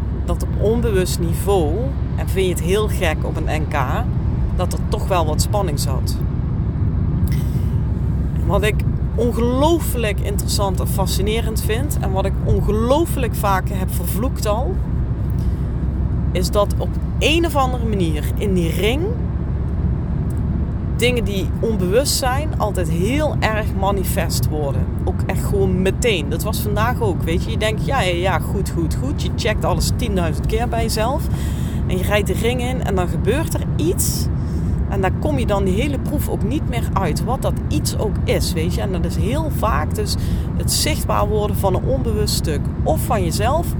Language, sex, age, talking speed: Dutch, female, 40-59, 170 wpm